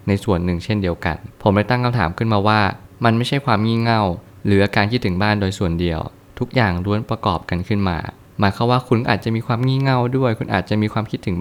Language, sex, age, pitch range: Thai, male, 20-39, 95-115 Hz